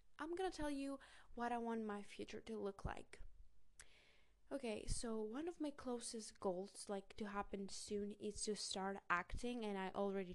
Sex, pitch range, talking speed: female, 210-255 Hz, 175 wpm